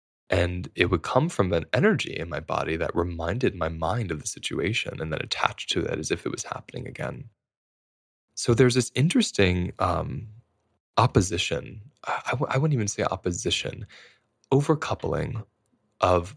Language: English